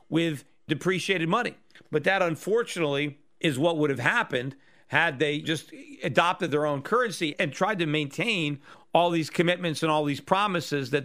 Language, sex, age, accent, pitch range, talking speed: English, male, 40-59, American, 140-175 Hz, 165 wpm